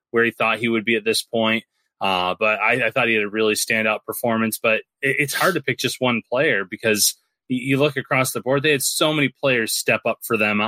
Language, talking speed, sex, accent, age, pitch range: English, 245 wpm, male, American, 20-39, 110-140 Hz